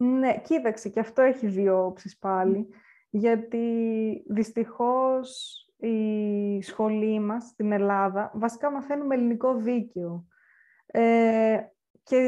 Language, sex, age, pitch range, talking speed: Greek, female, 20-39, 205-255 Hz, 100 wpm